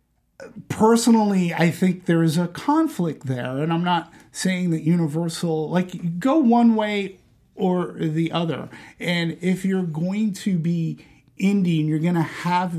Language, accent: English, American